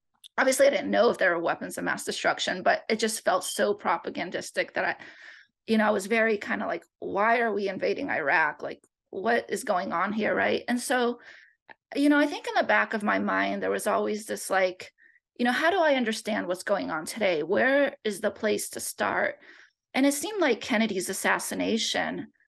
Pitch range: 205-260 Hz